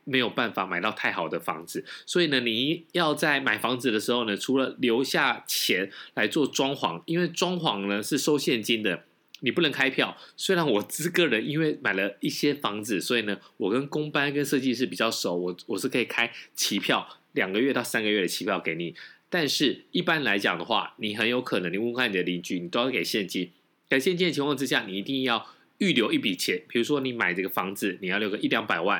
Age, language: 20-39, Chinese